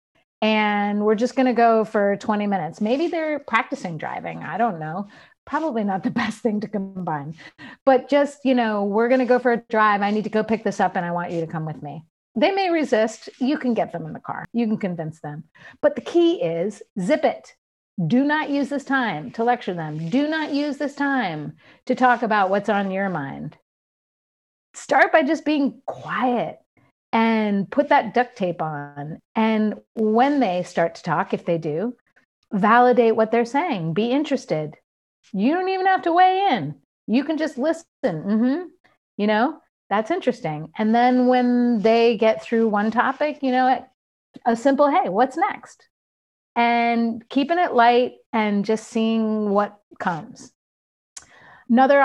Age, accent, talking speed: 30-49, American, 180 wpm